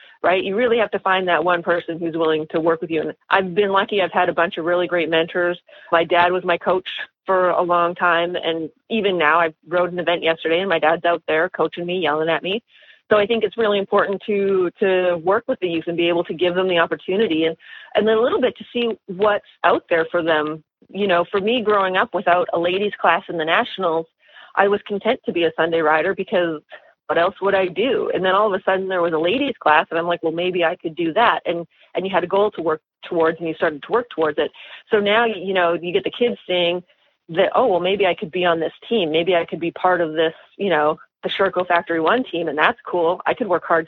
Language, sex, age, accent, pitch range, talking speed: English, female, 30-49, American, 165-195 Hz, 260 wpm